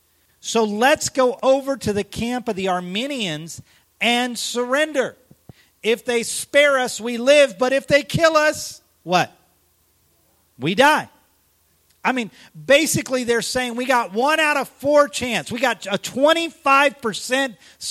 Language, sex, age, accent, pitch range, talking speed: English, male, 40-59, American, 150-225 Hz, 140 wpm